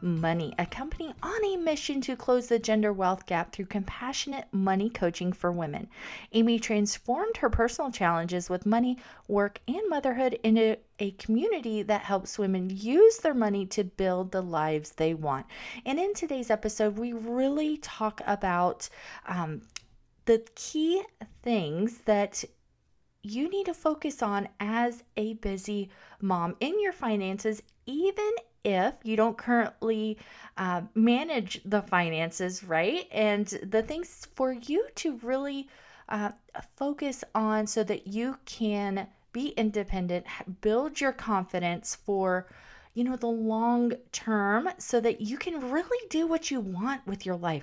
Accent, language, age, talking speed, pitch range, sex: American, English, 40-59, 145 wpm, 195-255 Hz, female